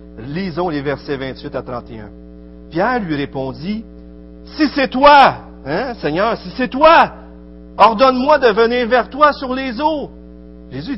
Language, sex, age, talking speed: French, male, 50-69, 140 wpm